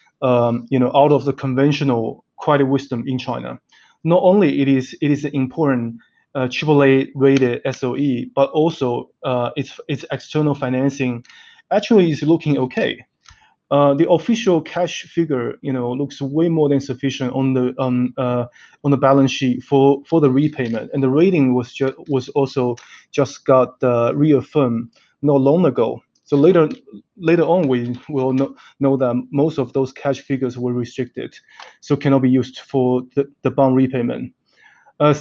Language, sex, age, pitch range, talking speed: Russian, male, 20-39, 130-145 Hz, 165 wpm